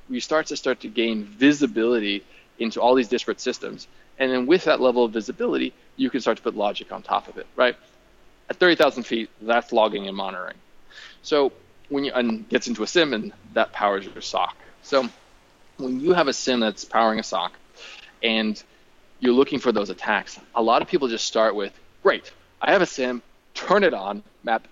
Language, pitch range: English, 110-135 Hz